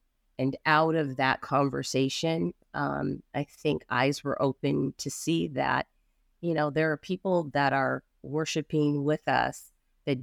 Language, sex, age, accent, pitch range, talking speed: English, female, 30-49, American, 135-155 Hz, 145 wpm